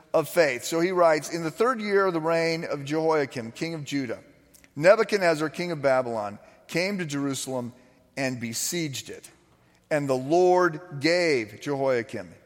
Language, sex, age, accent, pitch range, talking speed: English, male, 40-59, American, 125-165 Hz, 155 wpm